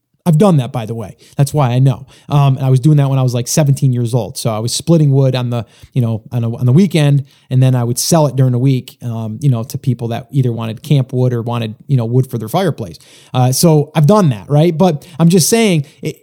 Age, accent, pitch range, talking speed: 20-39, American, 130-165 Hz, 275 wpm